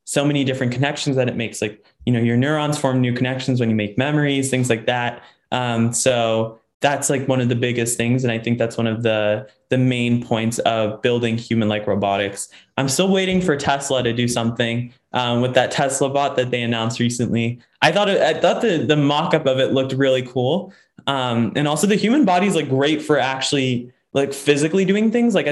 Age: 20-39